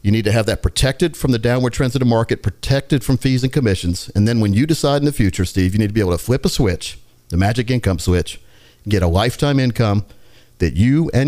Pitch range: 105-140 Hz